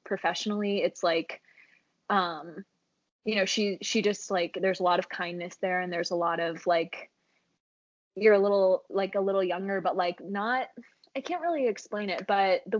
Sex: female